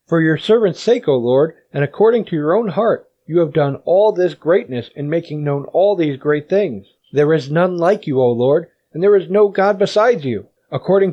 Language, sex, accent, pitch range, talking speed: English, male, American, 140-185 Hz, 215 wpm